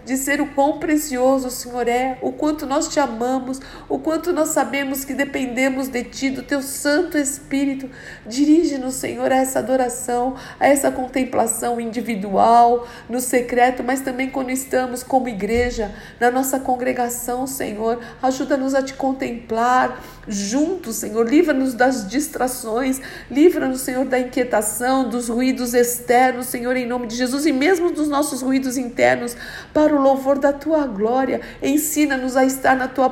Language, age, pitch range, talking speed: Portuguese, 50-69, 240-270 Hz, 150 wpm